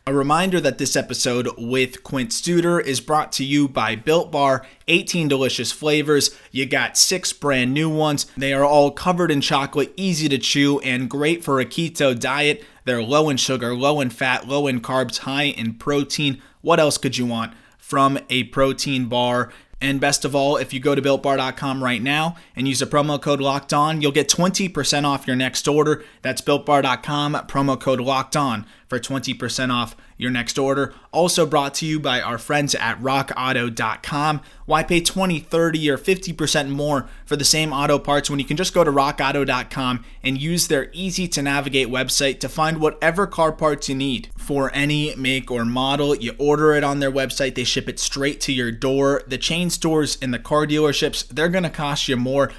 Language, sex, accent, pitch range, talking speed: English, male, American, 130-150 Hz, 195 wpm